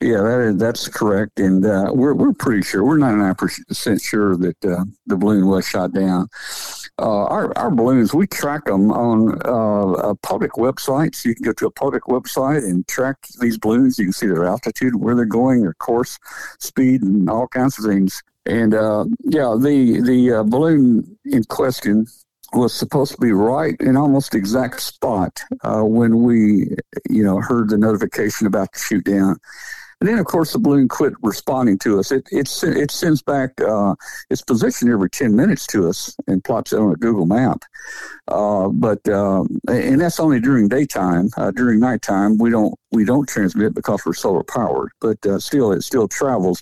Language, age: English, 60-79